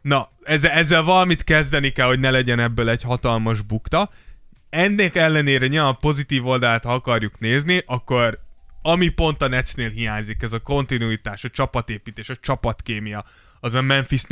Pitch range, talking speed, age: 115-135 Hz, 160 wpm, 20-39